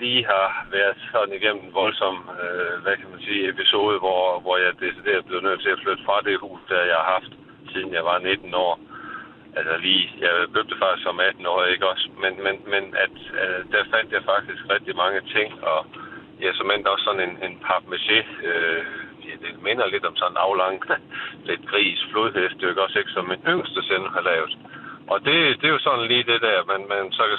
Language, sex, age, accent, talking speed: Danish, male, 50-69, native, 220 wpm